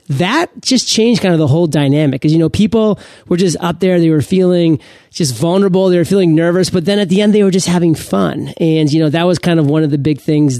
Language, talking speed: English, 265 wpm